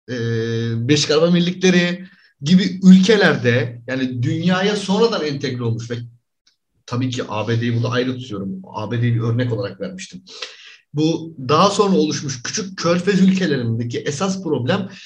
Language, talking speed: Turkish, 120 wpm